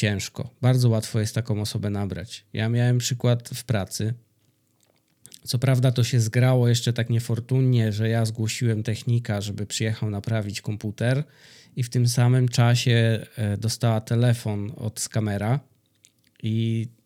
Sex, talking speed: male, 135 wpm